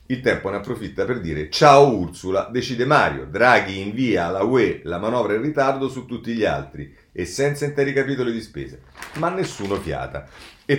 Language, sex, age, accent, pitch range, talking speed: Italian, male, 40-59, native, 90-135 Hz, 180 wpm